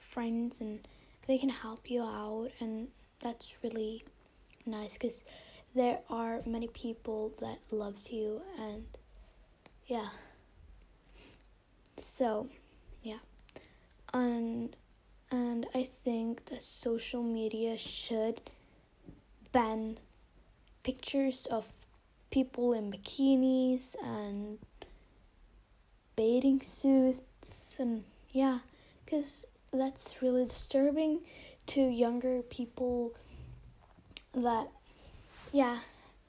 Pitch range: 225-265 Hz